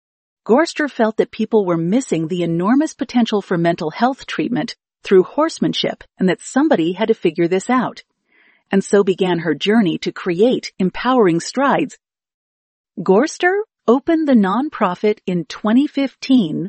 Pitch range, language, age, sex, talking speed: 185-255 Hz, English, 40-59, female, 135 wpm